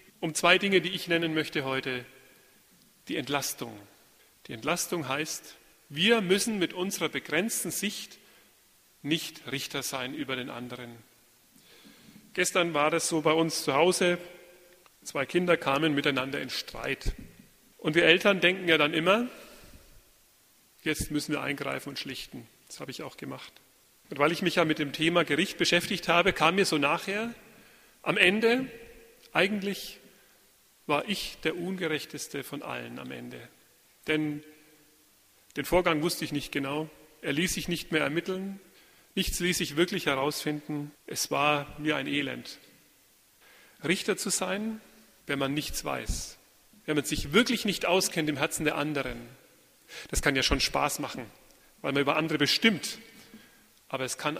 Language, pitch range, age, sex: German, 145-180 Hz, 40-59, male